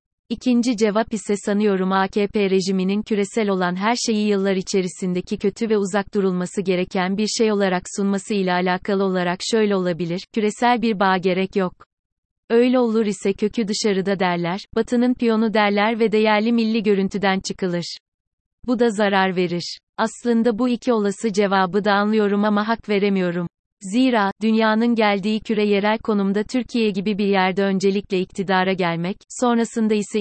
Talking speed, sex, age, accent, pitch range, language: 145 wpm, female, 30-49, native, 190-220 Hz, Turkish